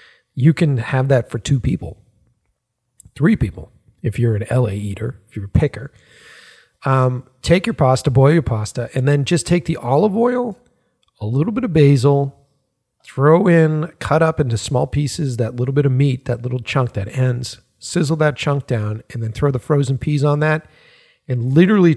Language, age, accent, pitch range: English, 40-59, American, 115-140 Hz